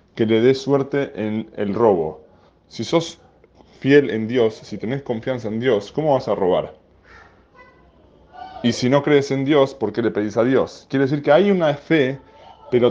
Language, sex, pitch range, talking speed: Spanish, male, 105-135 Hz, 185 wpm